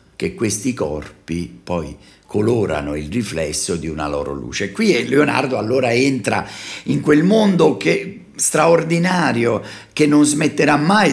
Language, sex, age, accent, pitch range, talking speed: Italian, male, 50-69, native, 95-145 Hz, 130 wpm